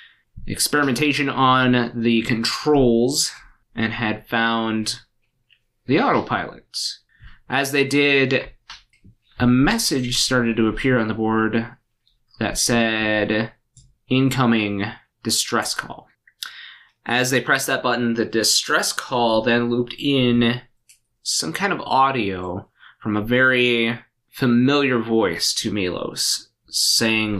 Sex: male